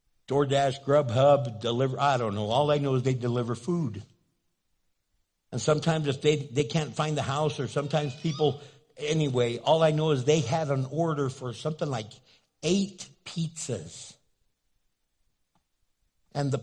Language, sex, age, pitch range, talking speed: English, male, 60-79, 120-150 Hz, 145 wpm